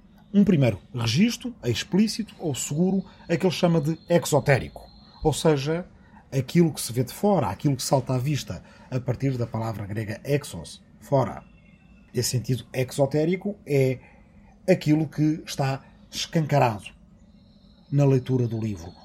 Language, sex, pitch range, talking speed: Portuguese, male, 120-165 Hz, 145 wpm